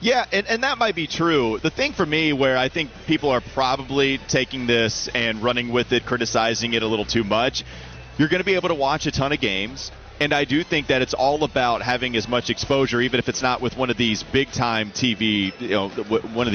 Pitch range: 115-145 Hz